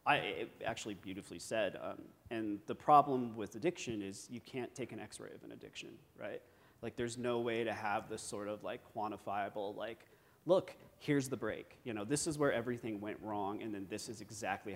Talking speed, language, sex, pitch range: 200 wpm, English, male, 110-125 Hz